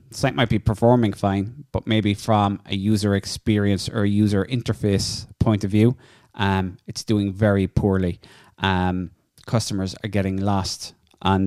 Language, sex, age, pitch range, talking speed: English, male, 20-39, 95-115 Hz, 155 wpm